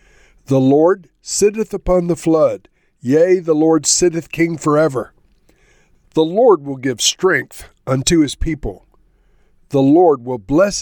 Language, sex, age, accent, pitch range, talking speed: English, male, 50-69, American, 125-165 Hz, 135 wpm